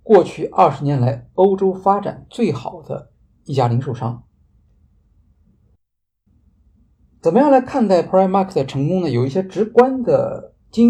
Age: 50-69